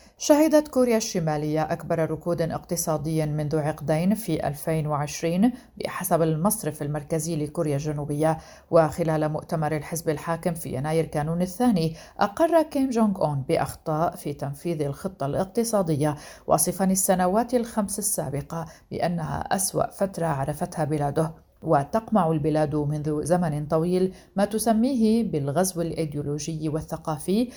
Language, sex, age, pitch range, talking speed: Arabic, female, 50-69, 150-190 Hz, 110 wpm